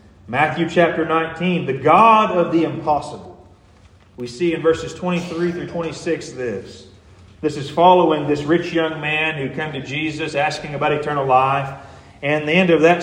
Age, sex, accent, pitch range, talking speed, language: 40-59, male, American, 105-170 Hz, 165 wpm, English